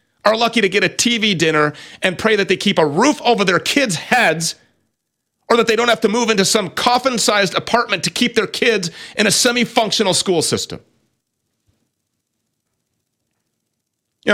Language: English